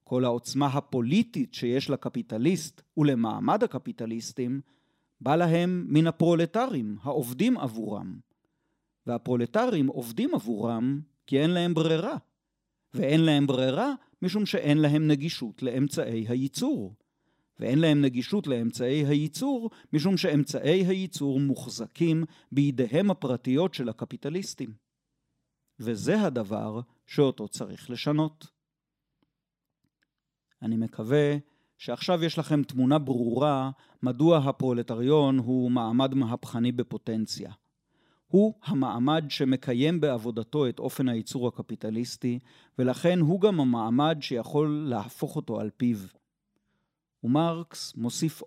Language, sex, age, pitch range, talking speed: Hebrew, male, 40-59, 125-160 Hz, 100 wpm